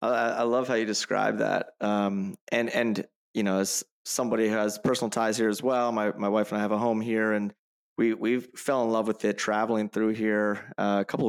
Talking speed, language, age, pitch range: 230 wpm, English, 20-39, 105-115 Hz